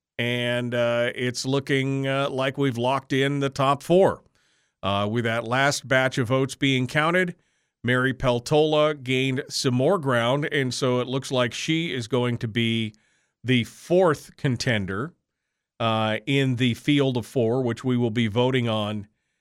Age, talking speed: 40-59, 160 wpm